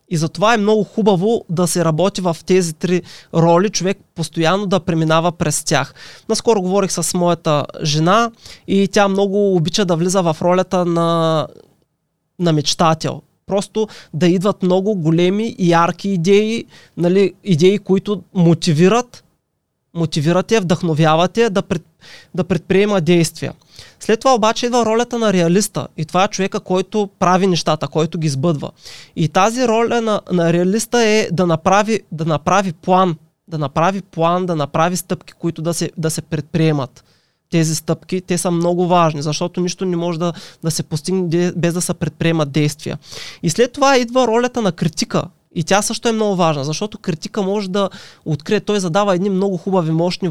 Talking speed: 165 wpm